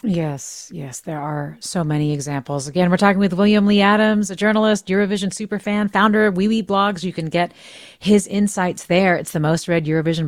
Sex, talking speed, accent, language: female, 200 wpm, American, English